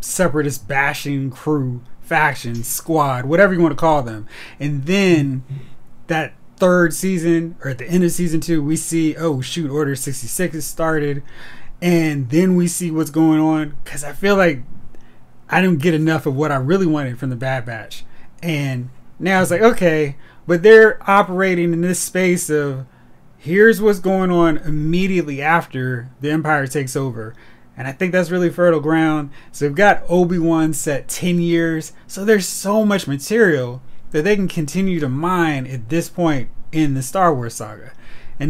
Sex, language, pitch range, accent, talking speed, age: male, English, 140-175 Hz, American, 175 wpm, 20-39